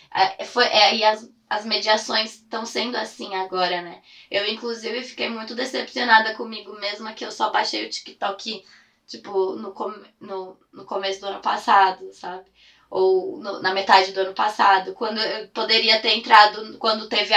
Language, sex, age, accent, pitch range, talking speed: Portuguese, female, 20-39, Brazilian, 200-230 Hz, 170 wpm